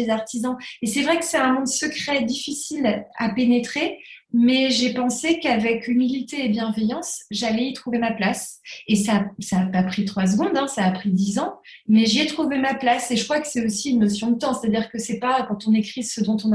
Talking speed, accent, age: 235 wpm, French, 30-49